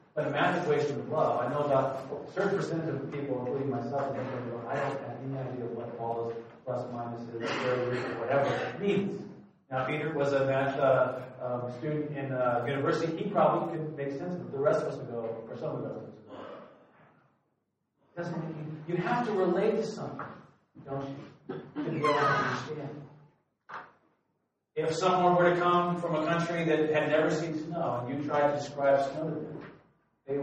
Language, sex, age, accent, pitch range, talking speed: English, male, 40-59, American, 135-170 Hz, 190 wpm